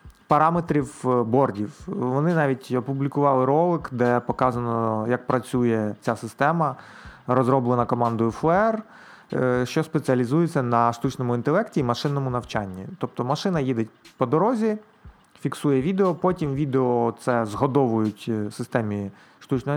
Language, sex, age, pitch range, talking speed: Ukrainian, male, 30-49, 120-140 Hz, 110 wpm